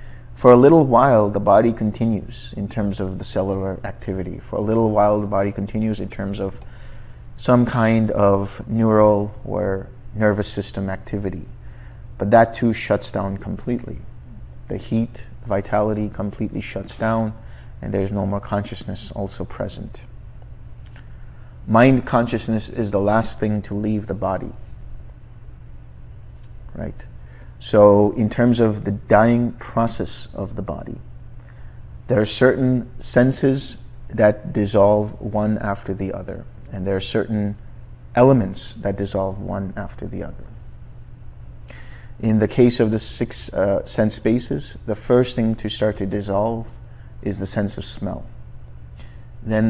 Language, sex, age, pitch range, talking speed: English, male, 30-49, 100-115 Hz, 140 wpm